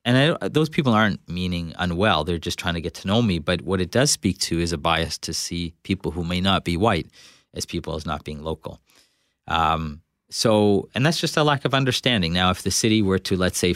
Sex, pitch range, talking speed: male, 85-100 Hz, 235 wpm